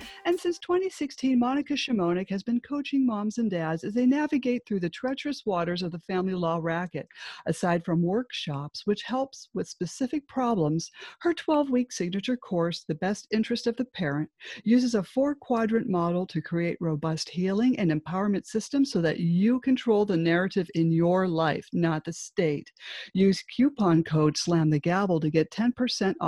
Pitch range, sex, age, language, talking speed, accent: 165-230 Hz, female, 50-69, English, 160 wpm, American